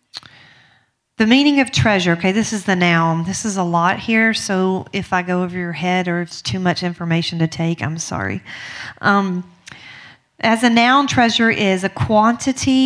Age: 40-59